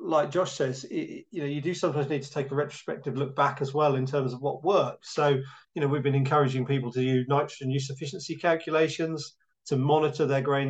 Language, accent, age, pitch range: English, British, 40-59, 135-155 Hz